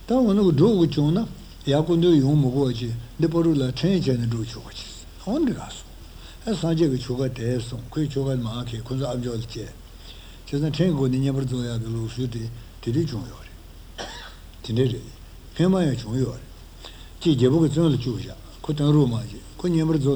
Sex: male